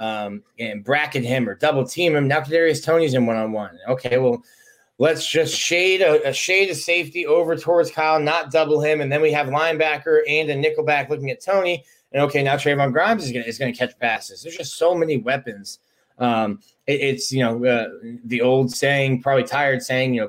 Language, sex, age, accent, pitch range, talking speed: English, male, 20-39, American, 130-170 Hz, 215 wpm